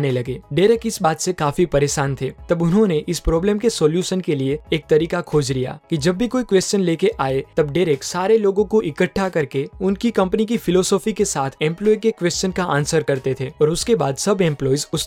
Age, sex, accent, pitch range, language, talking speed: 20-39, male, native, 150-200 Hz, Hindi, 210 wpm